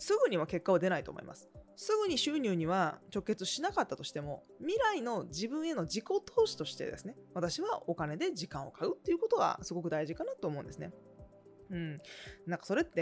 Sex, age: female, 20-39